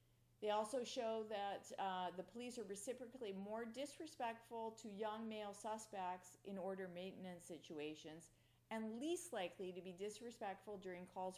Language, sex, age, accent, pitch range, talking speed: English, female, 40-59, American, 155-205 Hz, 140 wpm